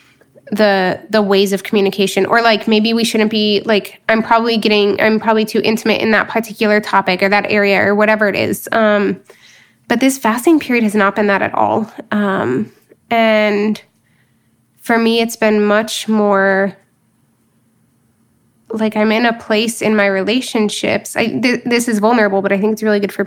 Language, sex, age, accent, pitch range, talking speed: English, female, 10-29, American, 205-225 Hz, 180 wpm